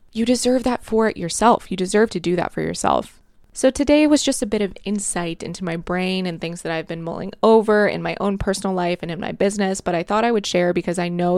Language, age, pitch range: English, 20-39, 175-215 Hz